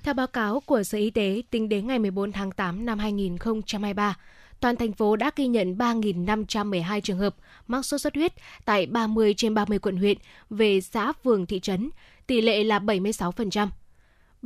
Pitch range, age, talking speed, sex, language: 205-250 Hz, 20-39, 180 wpm, female, Vietnamese